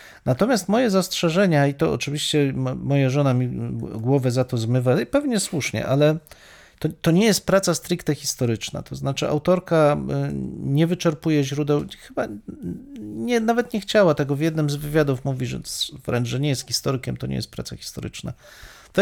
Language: Polish